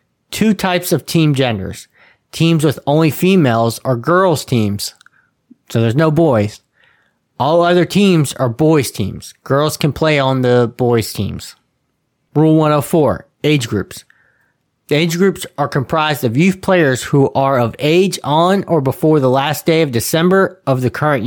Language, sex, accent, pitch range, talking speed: English, male, American, 115-155 Hz, 160 wpm